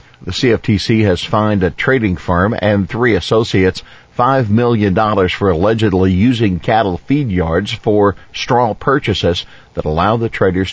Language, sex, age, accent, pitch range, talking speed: English, male, 50-69, American, 95-115 Hz, 140 wpm